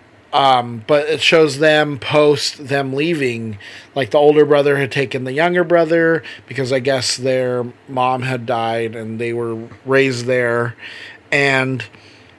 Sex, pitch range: male, 120-150 Hz